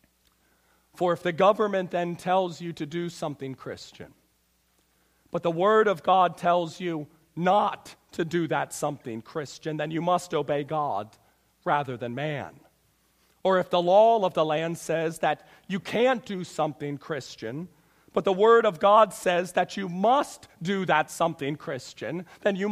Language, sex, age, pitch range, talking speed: English, male, 40-59, 160-195 Hz, 160 wpm